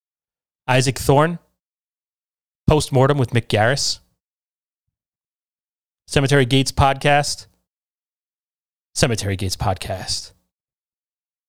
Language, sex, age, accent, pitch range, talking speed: English, male, 30-49, American, 95-145 Hz, 65 wpm